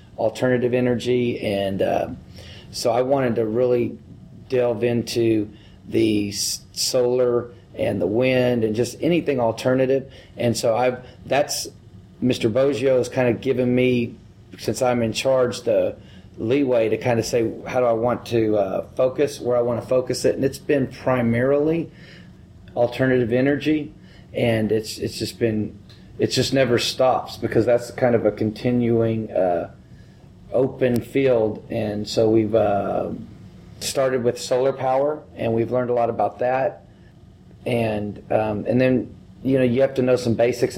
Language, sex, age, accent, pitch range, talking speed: English, male, 30-49, American, 110-125 Hz, 155 wpm